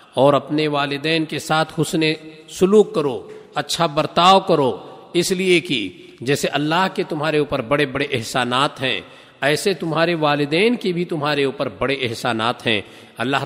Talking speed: 150 wpm